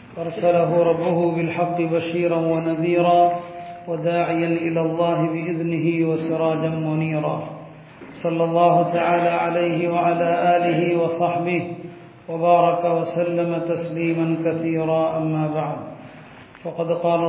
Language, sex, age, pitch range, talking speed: Tamil, male, 40-59, 165-175 Hz, 90 wpm